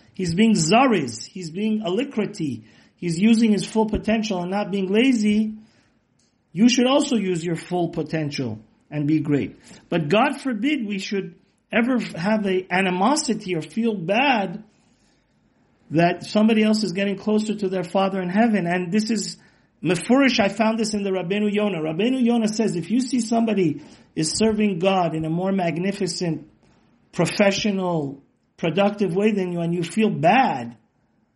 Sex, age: male, 40-59